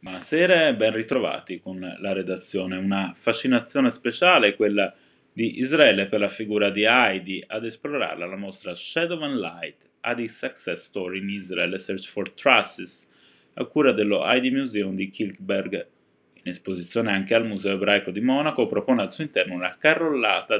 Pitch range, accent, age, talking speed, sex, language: 100-130 Hz, native, 20-39, 165 wpm, male, Italian